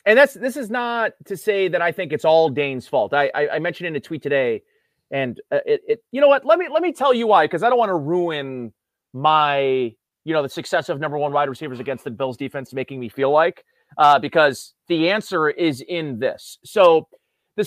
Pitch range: 135-200 Hz